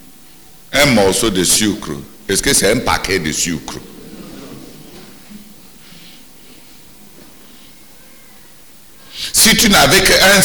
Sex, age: male, 60-79